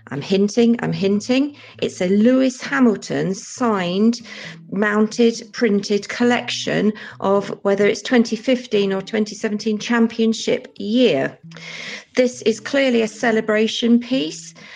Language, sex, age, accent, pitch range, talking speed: English, female, 40-59, British, 165-230 Hz, 105 wpm